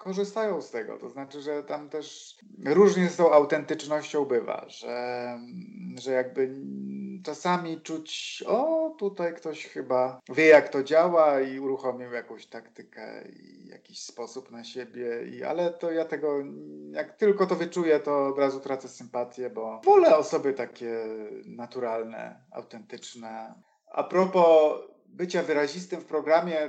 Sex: male